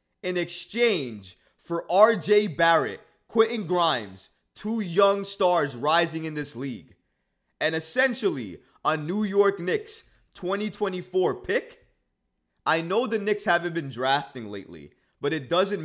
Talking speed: 125 wpm